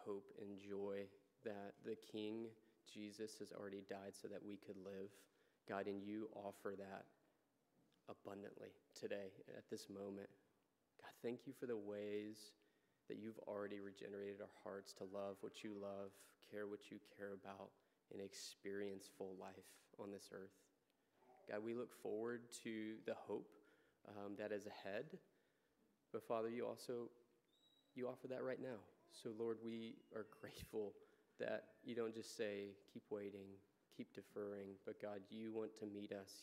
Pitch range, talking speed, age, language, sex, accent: 100-110 Hz, 155 wpm, 20-39, English, male, American